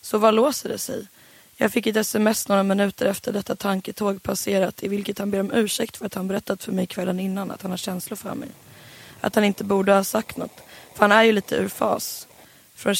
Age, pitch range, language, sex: 20-39, 190-215 Hz, English, female